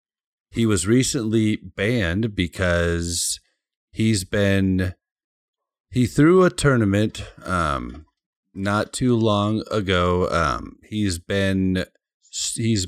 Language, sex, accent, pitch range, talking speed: English, male, American, 90-115 Hz, 95 wpm